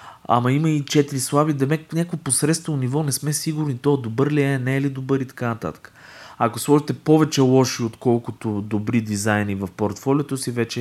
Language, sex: Bulgarian, male